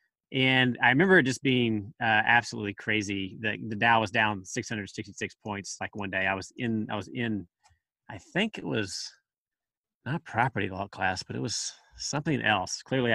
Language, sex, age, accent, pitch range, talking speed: English, male, 30-49, American, 100-130 Hz, 180 wpm